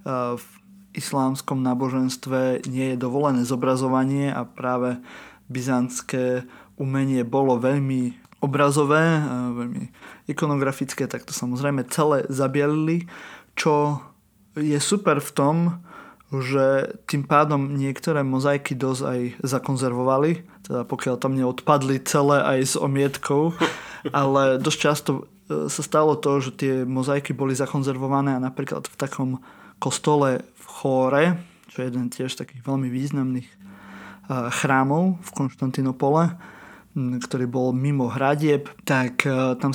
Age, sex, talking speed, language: 20-39, male, 115 wpm, Slovak